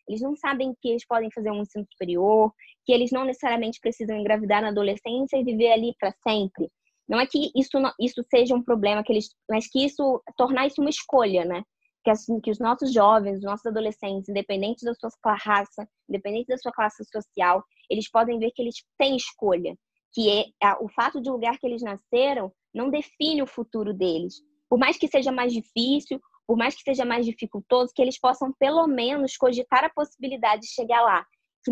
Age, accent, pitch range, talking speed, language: 20-39, Brazilian, 210-265 Hz, 200 wpm, Portuguese